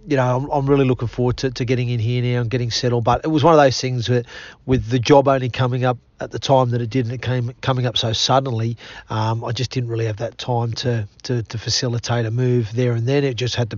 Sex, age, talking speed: male, 40-59, 280 wpm